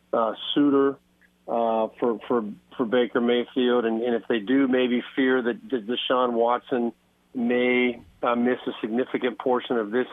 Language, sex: English, male